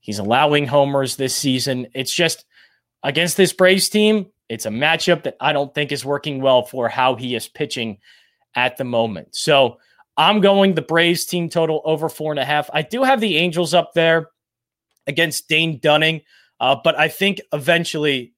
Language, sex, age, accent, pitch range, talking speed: English, male, 30-49, American, 130-170 Hz, 185 wpm